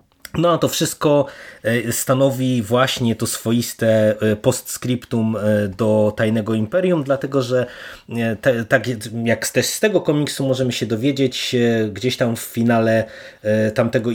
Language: Polish